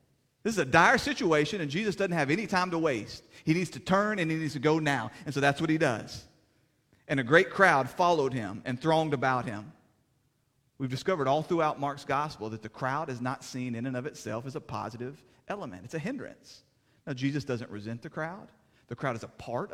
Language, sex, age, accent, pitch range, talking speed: English, male, 40-59, American, 130-175 Hz, 220 wpm